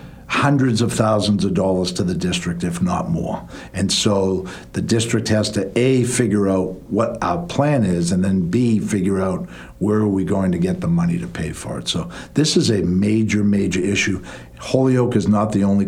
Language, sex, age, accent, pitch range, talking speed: English, male, 60-79, American, 105-130 Hz, 200 wpm